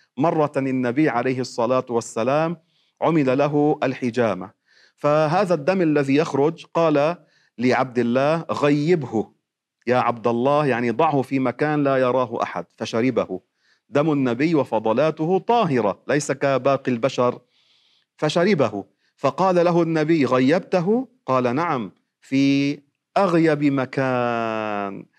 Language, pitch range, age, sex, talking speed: Arabic, 130-165 Hz, 40-59, male, 105 wpm